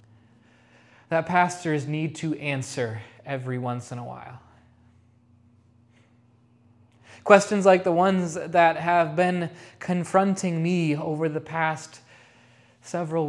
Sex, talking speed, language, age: male, 105 wpm, English, 20-39